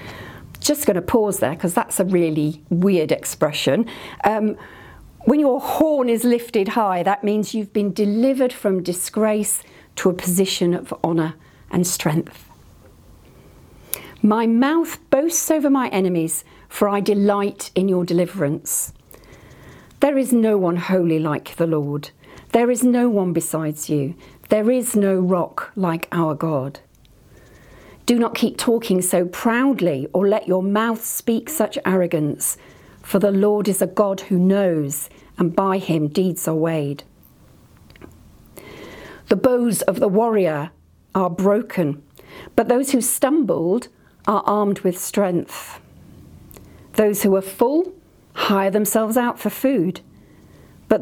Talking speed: 140 wpm